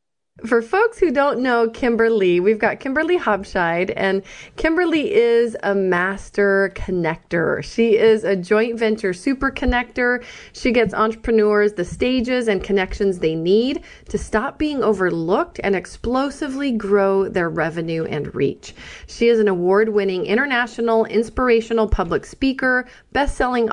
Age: 30-49